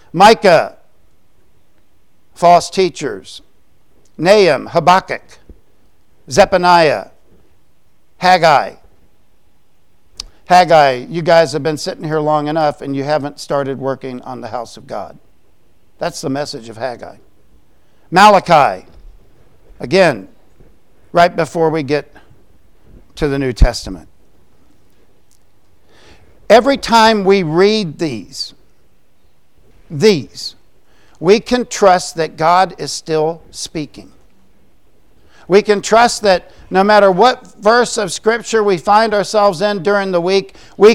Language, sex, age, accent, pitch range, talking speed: English, male, 50-69, American, 140-205 Hz, 105 wpm